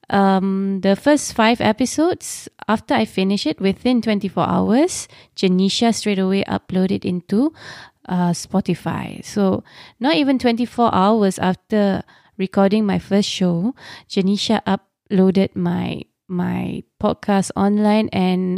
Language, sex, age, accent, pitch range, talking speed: English, female, 20-39, Malaysian, 185-225 Hz, 125 wpm